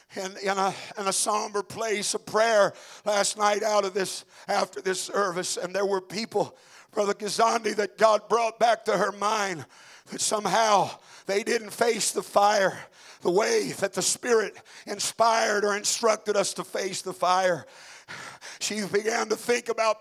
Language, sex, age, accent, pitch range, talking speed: English, male, 50-69, American, 200-235 Hz, 165 wpm